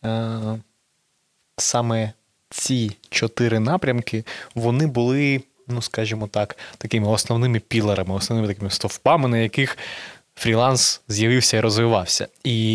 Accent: native